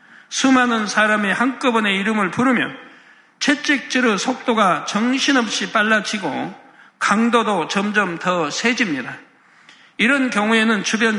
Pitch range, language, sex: 200-245 Hz, Korean, male